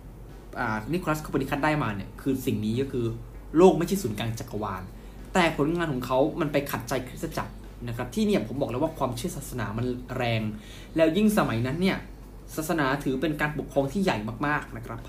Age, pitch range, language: 20-39, 120-160 Hz, Thai